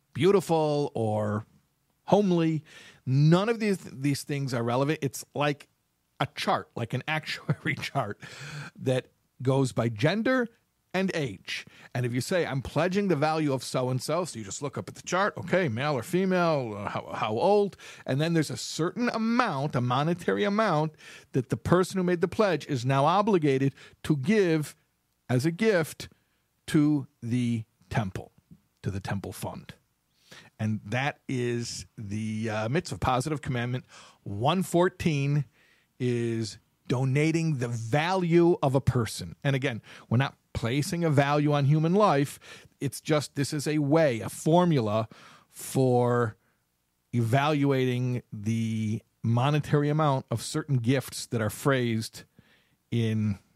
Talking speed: 140 wpm